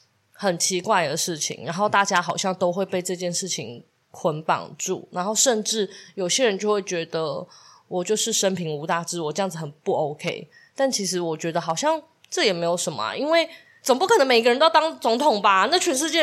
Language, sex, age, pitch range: Chinese, female, 20-39, 175-230 Hz